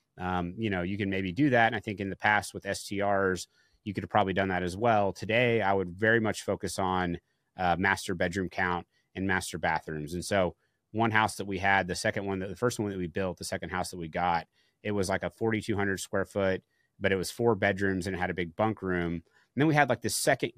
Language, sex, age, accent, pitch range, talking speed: English, male, 30-49, American, 95-110 Hz, 255 wpm